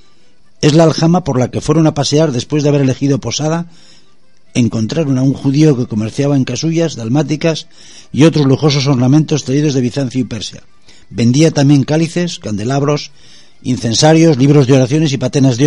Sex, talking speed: male, 165 wpm